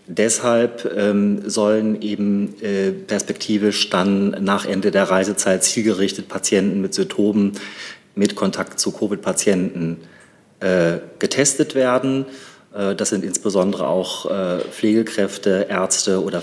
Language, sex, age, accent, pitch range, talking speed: German, male, 40-59, German, 95-110 Hz, 110 wpm